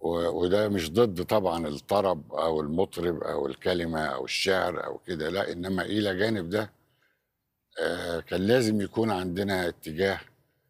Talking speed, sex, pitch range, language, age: 135 wpm, male, 80-110 Hz, Arabic, 60-79